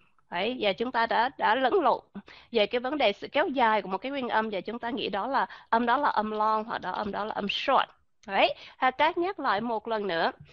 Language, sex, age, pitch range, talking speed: Vietnamese, female, 20-39, 215-295 Hz, 255 wpm